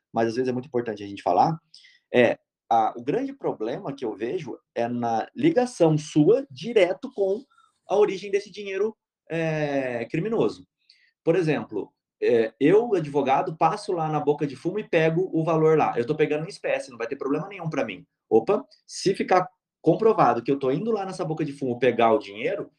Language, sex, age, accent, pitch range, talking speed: Portuguese, male, 20-39, Brazilian, 140-210 Hz, 180 wpm